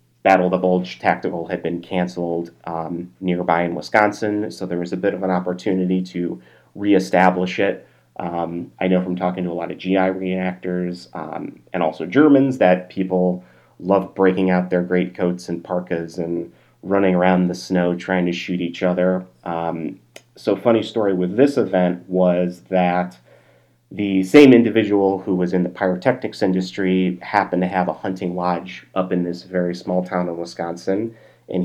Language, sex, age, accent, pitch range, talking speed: English, male, 30-49, American, 90-95 Hz, 175 wpm